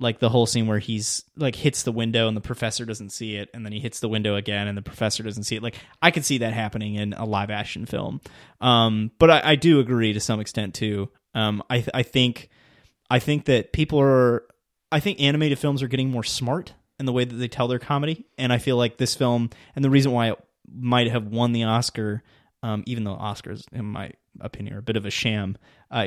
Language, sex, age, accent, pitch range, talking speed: English, male, 20-39, American, 110-125 Hz, 245 wpm